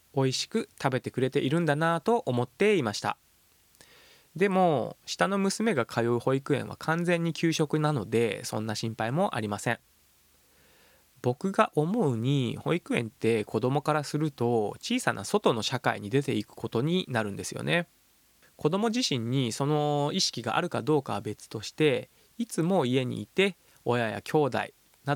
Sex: male